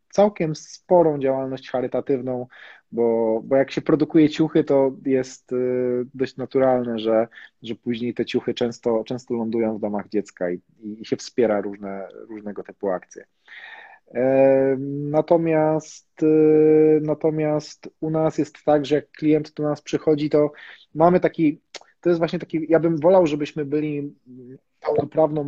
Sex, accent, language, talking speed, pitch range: male, native, Polish, 145 wpm, 125-155 Hz